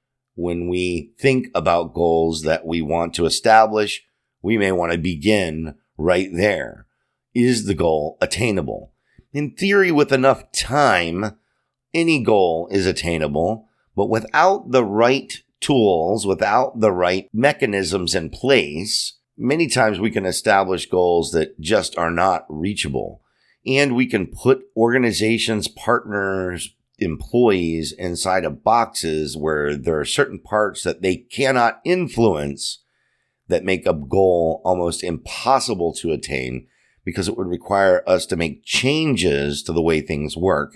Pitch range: 80-115 Hz